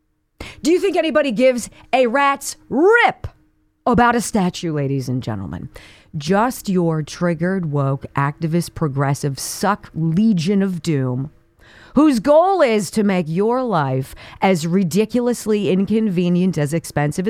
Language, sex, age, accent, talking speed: English, female, 40-59, American, 125 wpm